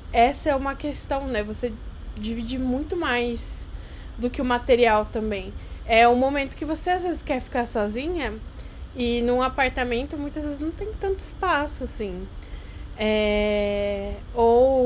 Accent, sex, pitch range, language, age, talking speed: Brazilian, female, 235-290 Hz, Portuguese, 10-29, 140 wpm